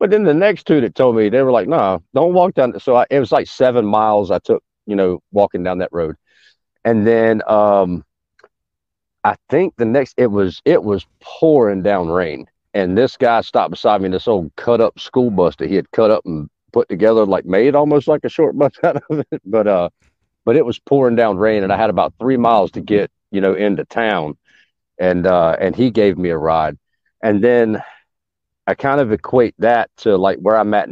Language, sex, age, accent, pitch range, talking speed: English, male, 40-59, American, 95-120 Hz, 220 wpm